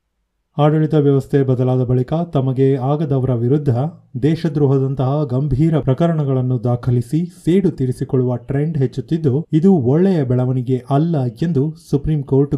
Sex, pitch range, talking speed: male, 130-155 Hz, 100 wpm